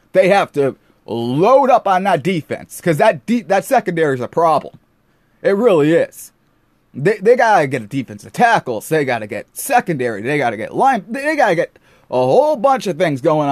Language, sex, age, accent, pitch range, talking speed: English, male, 30-49, American, 160-255 Hz, 215 wpm